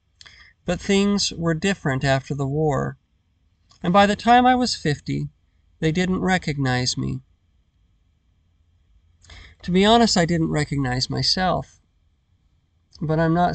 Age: 50-69